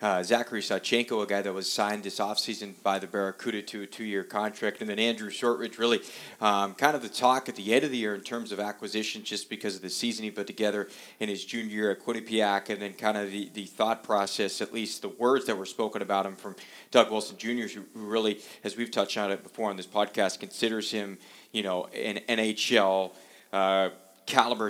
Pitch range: 100-110 Hz